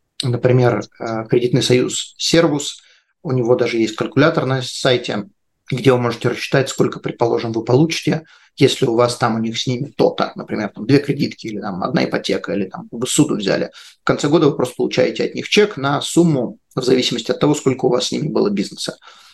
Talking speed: 195 wpm